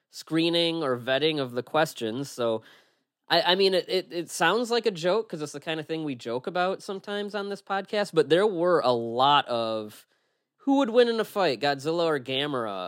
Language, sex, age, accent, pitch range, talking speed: English, male, 20-39, American, 115-175 Hz, 210 wpm